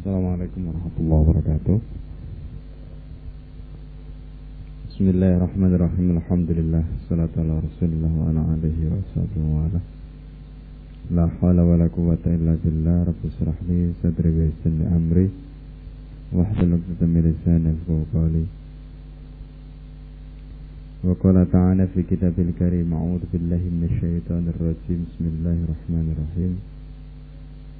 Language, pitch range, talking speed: Indonesian, 80-90 Hz, 80 wpm